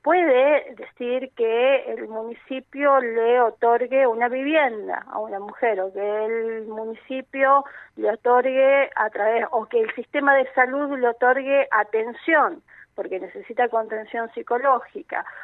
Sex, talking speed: female, 130 wpm